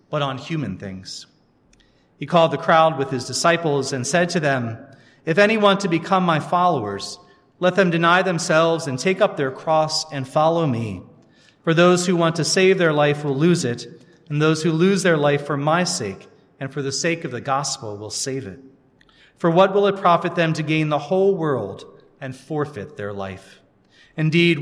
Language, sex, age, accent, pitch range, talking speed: English, male, 40-59, American, 125-170 Hz, 195 wpm